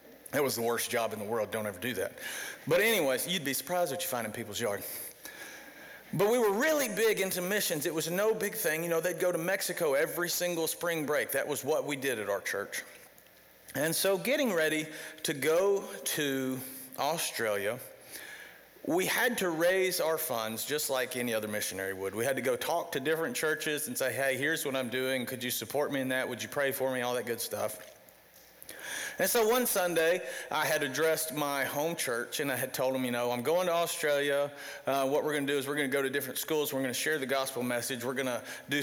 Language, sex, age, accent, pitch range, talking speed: English, male, 40-59, American, 130-165 Hz, 230 wpm